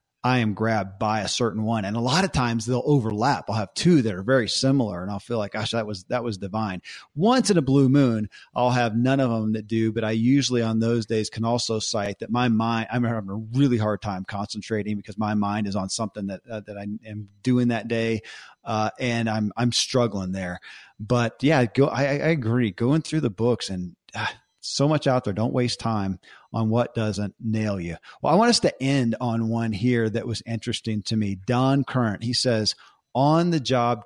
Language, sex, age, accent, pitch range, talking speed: English, male, 40-59, American, 110-125 Hz, 220 wpm